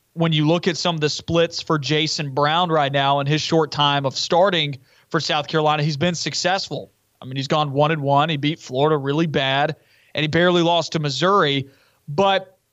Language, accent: English, American